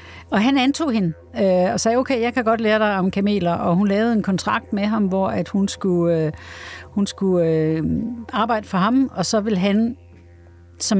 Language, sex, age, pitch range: Danish, female, 60-79, 170-210 Hz